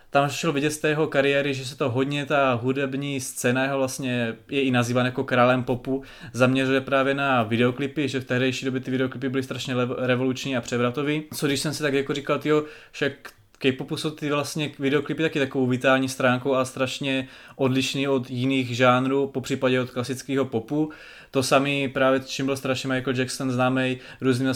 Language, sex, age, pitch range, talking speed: Czech, male, 20-39, 125-135 Hz, 190 wpm